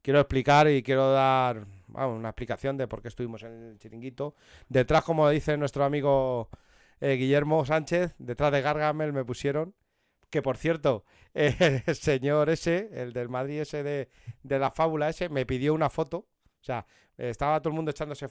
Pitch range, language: 115-150 Hz, Spanish